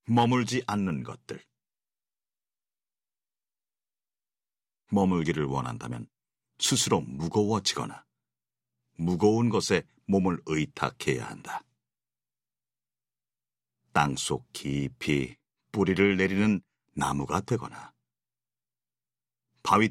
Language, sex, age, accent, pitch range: Korean, male, 50-69, native, 70-115 Hz